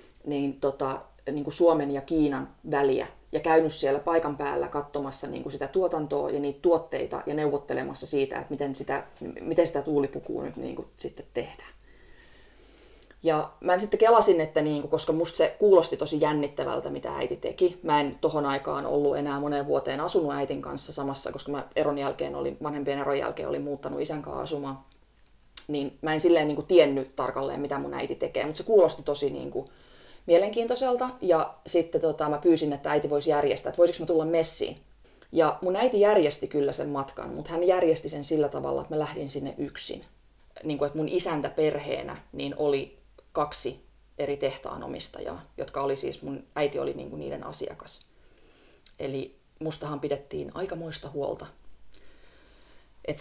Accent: native